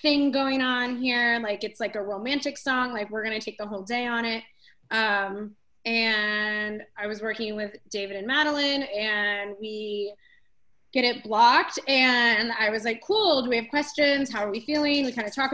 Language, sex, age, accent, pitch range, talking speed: English, female, 20-39, American, 210-265 Hz, 195 wpm